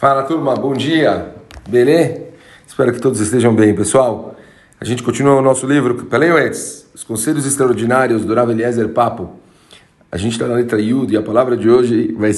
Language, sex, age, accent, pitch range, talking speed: Portuguese, male, 40-59, Brazilian, 100-130 Hz, 180 wpm